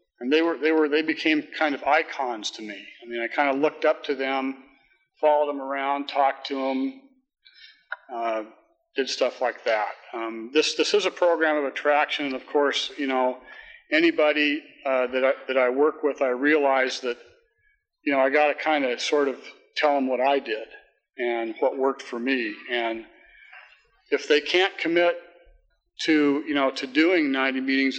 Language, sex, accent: English, male, American